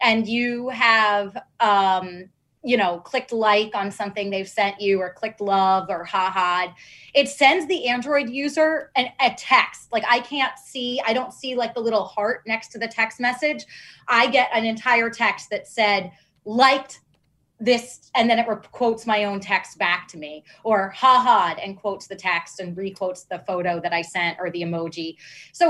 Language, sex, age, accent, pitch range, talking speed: English, female, 20-39, American, 185-245 Hz, 190 wpm